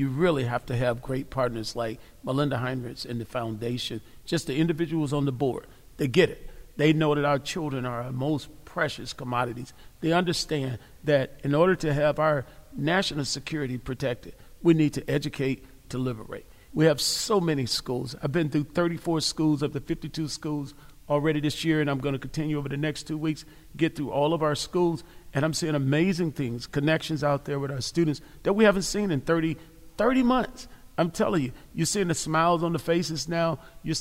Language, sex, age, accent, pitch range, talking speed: English, male, 40-59, American, 135-165 Hz, 200 wpm